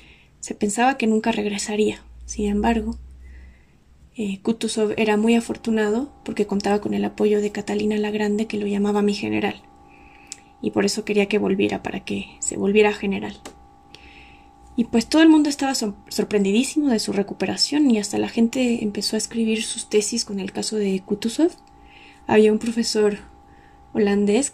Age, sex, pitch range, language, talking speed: 20-39, female, 200-230 Hz, Spanish, 160 wpm